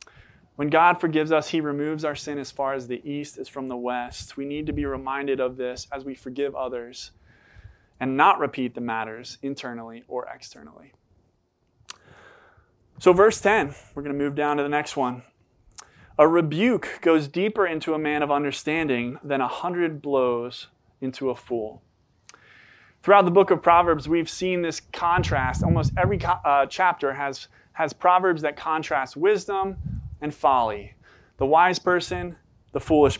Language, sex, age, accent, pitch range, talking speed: English, male, 20-39, American, 125-170 Hz, 160 wpm